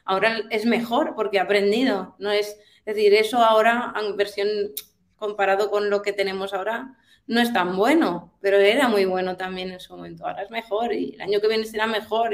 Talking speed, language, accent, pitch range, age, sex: 205 wpm, Spanish, Spanish, 175-215 Hz, 20-39, female